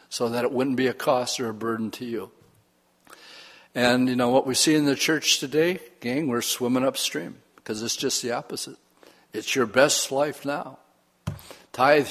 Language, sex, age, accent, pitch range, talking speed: English, male, 60-79, American, 120-150 Hz, 185 wpm